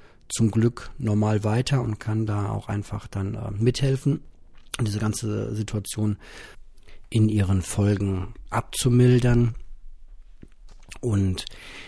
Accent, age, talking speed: German, 40-59, 100 wpm